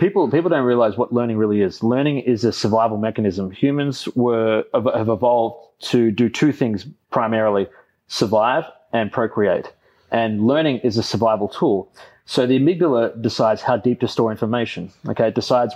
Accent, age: Australian, 30-49